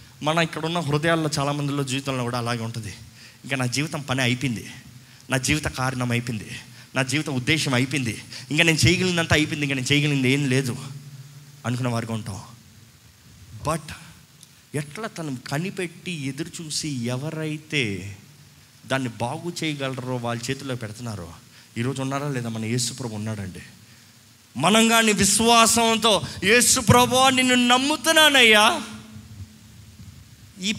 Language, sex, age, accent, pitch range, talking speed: Telugu, male, 20-39, native, 120-185 Hz, 115 wpm